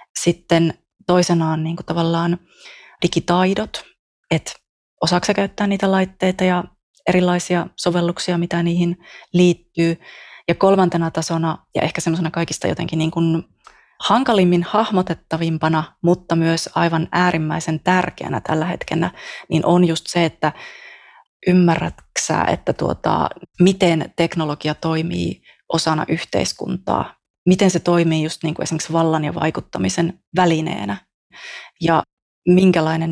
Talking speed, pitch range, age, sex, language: 110 wpm, 160-180 Hz, 20-39, female, Finnish